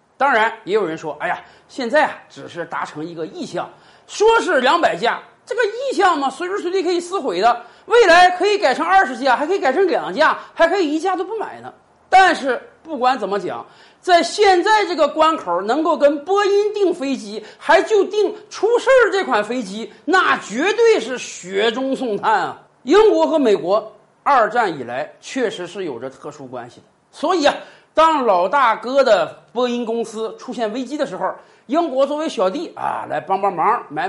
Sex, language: male, Chinese